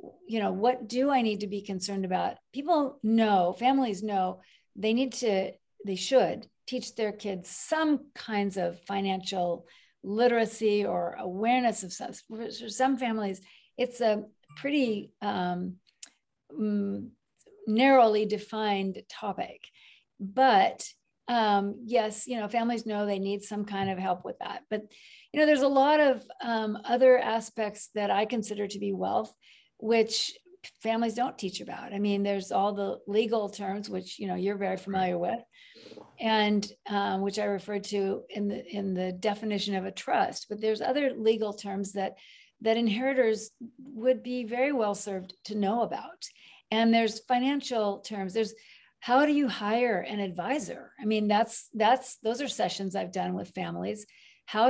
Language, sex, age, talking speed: English, female, 50-69, 155 wpm